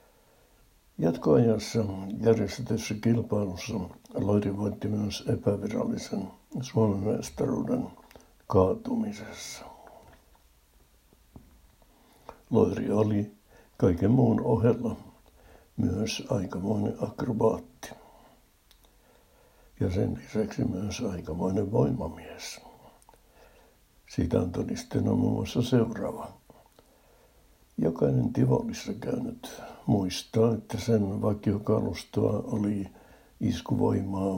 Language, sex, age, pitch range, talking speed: Finnish, male, 60-79, 95-115 Hz, 65 wpm